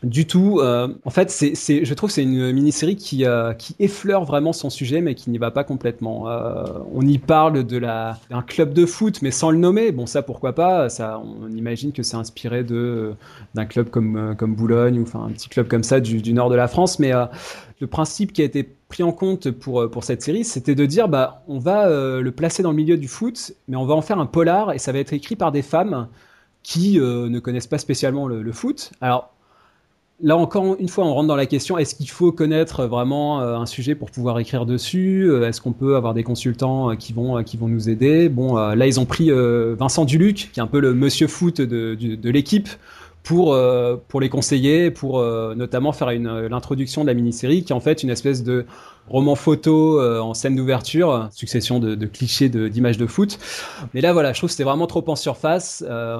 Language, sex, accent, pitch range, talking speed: French, male, French, 120-160 Hz, 230 wpm